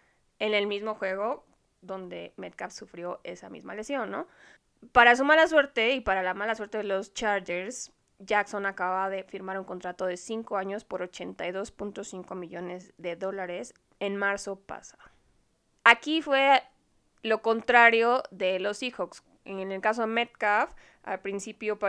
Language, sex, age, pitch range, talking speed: Spanish, female, 20-39, 190-225 Hz, 150 wpm